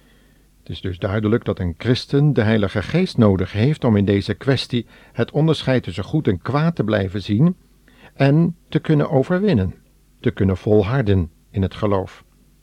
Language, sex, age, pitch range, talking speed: Dutch, male, 50-69, 100-130 Hz, 165 wpm